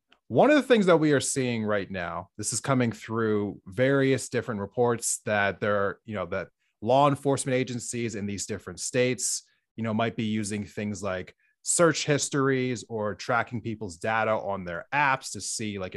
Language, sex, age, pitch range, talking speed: English, male, 30-49, 100-130 Hz, 180 wpm